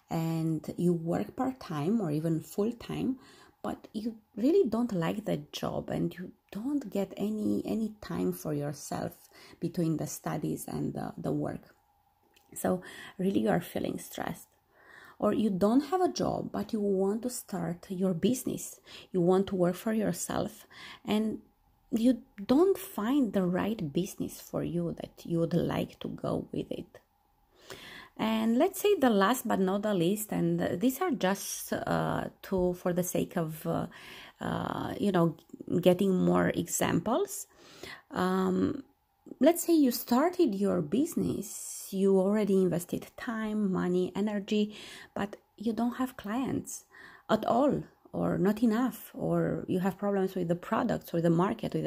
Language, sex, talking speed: Romanian, female, 155 wpm